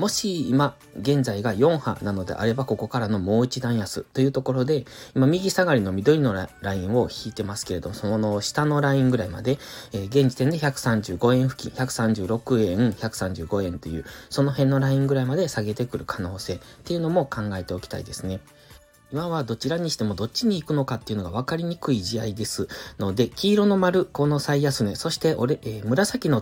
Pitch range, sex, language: 105-140 Hz, male, Japanese